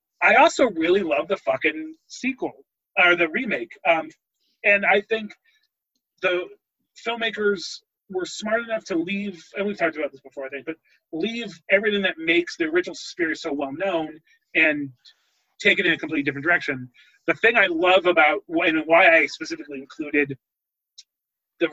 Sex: male